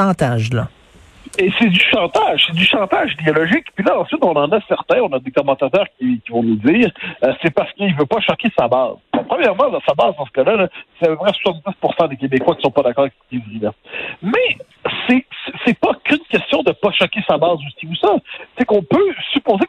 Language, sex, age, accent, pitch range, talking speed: French, male, 60-79, French, 160-235 Hz, 230 wpm